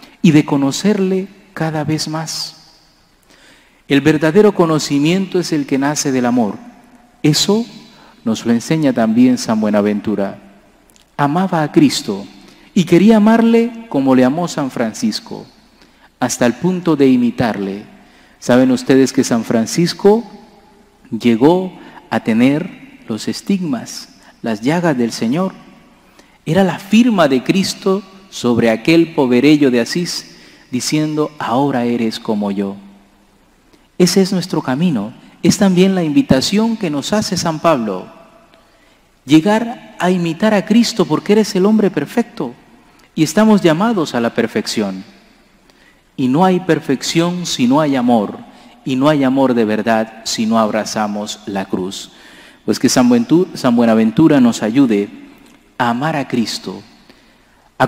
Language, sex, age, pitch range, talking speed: English, male, 40-59, 120-200 Hz, 130 wpm